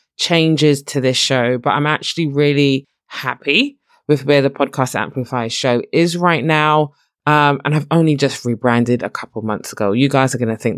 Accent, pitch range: British, 130-160 Hz